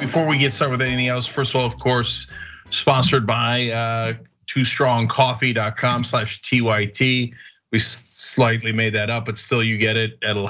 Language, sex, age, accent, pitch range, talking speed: English, male, 40-59, American, 115-145 Hz, 160 wpm